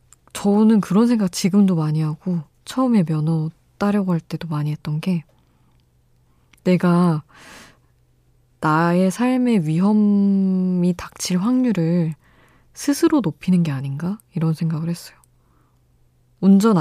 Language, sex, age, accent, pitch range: Korean, female, 20-39, native, 145-185 Hz